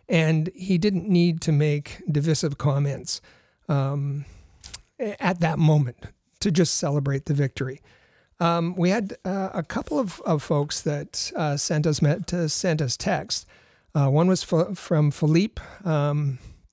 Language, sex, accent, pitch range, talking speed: English, male, American, 145-175 Hz, 145 wpm